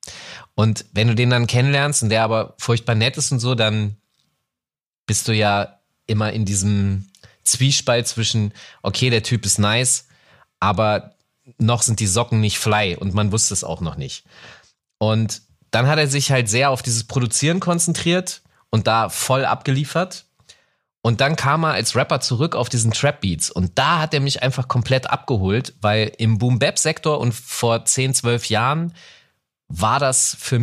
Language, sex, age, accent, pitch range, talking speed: German, male, 30-49, German, 105-130 Hz, 175 wpm